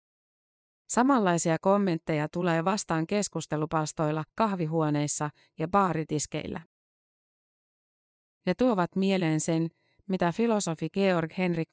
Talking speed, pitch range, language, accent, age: 75 wpm, 155-185 Hz, Finnish, native, 30-49